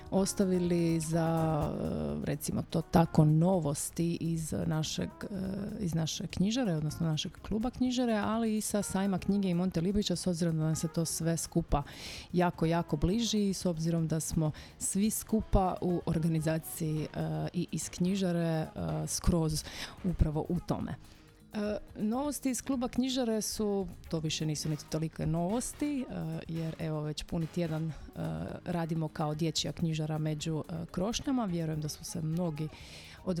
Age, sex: 30-49, female